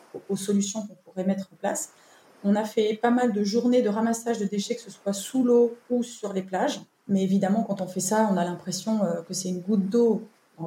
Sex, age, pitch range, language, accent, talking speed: female, 20-39, 180-220 Hz, French, French, 235 wpm